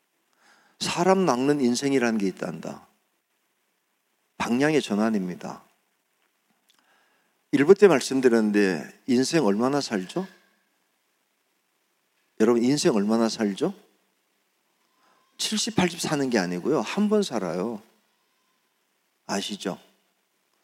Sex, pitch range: male, 110-175 Hz